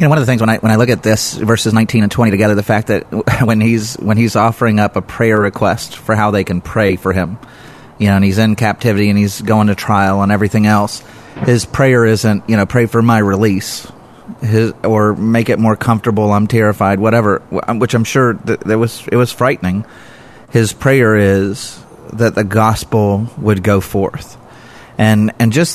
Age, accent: 30-49, American